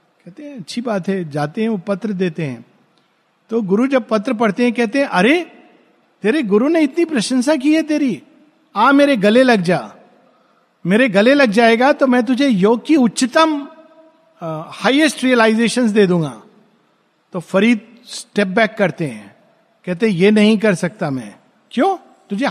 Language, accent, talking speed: Hindi, native, 165 wpm